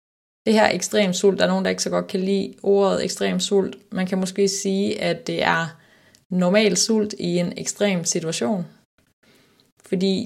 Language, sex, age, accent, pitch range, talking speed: Danish, female, 20-39, native, 175-210 Hz, 175 wpm